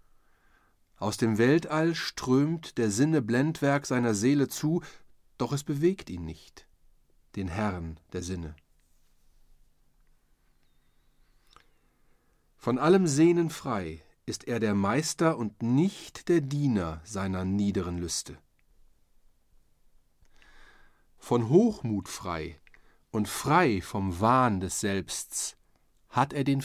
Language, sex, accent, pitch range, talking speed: German, male, German, 90-140 Hz, 100 wpm